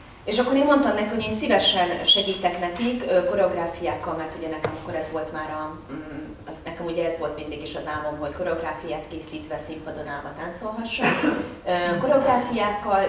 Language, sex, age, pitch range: Hungarian, female, 30-49, 160-210 Hz